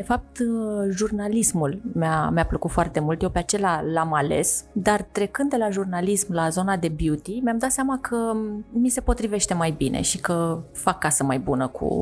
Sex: female